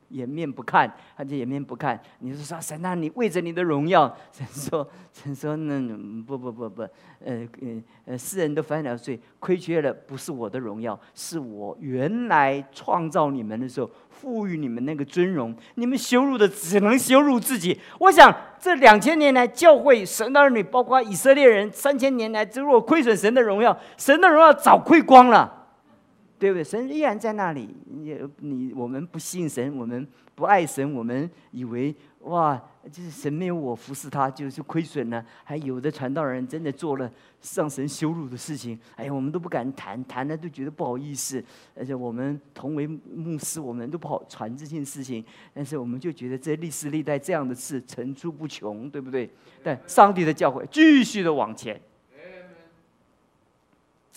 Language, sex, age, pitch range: Chinese, male, 50-69, 130-205 Hz